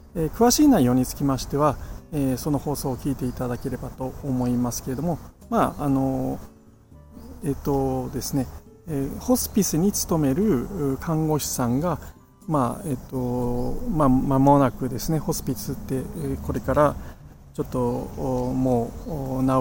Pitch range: 125-155 Hz